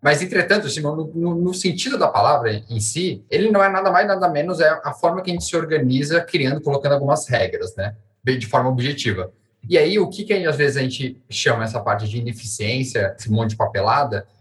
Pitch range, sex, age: 120-155 Hz, male, 10-29